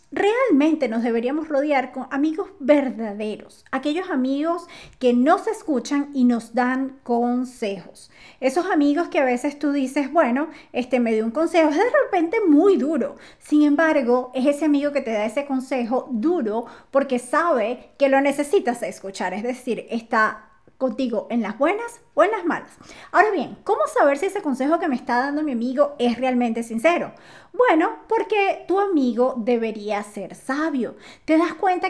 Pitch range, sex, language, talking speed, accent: 245-330 Hz, female, Spanish, 165 wpm, American